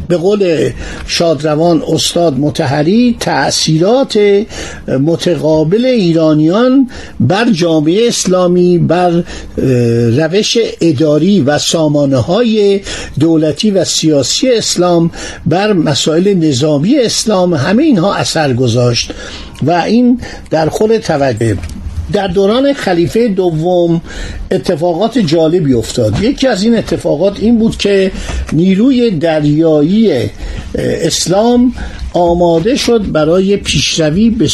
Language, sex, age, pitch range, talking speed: Persian, male, 50-69, 155-215 Hz, 95 wpm